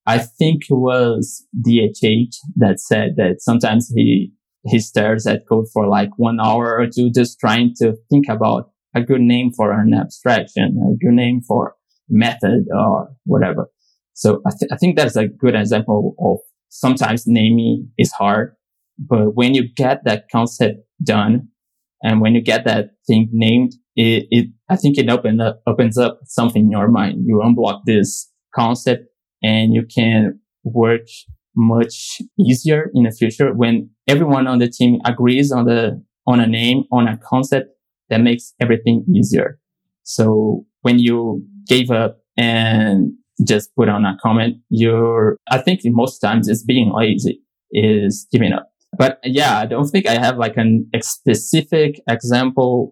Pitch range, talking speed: 110-125 Hz, 160 wpm